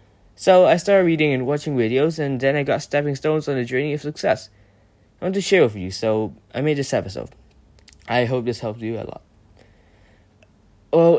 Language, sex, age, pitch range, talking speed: English, male, 10-29, 115-165 Hz, 200 wpm